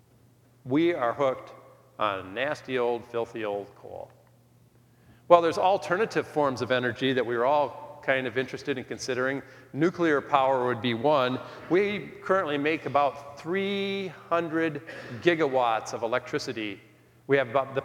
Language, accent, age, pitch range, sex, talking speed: English, American, 40-59, 120-145 Hz, male, 135 wpm